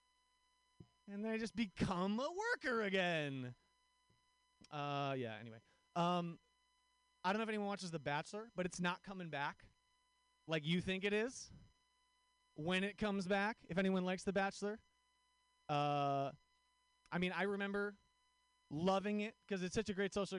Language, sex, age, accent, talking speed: English, male, 30-49, American, 155 wpm